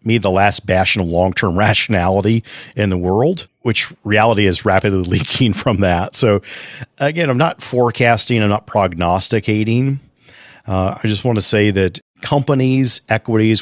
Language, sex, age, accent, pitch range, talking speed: English, male, 40-59, American, 95-115 Hz, 150 wpm